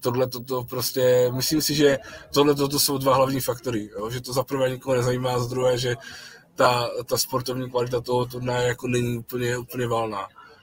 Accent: native